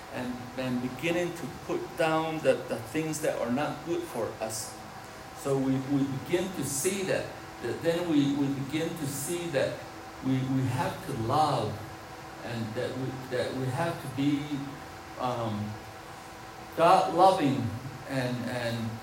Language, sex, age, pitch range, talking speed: English, male, 60-79, 115-155 Hz, 160 wpm